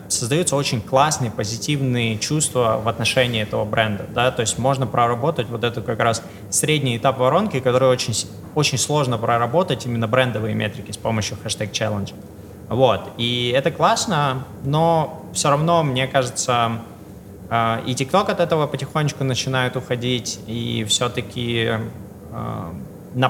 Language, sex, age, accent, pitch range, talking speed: Russian, male, 20-39, native, 110-135 Hz, 130 wpm